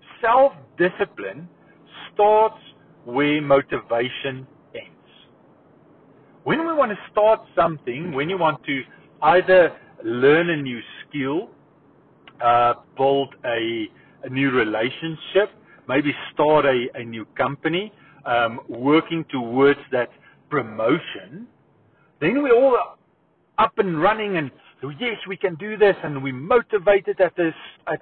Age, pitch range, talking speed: 50-69, 145-195 Hz, 115 wpm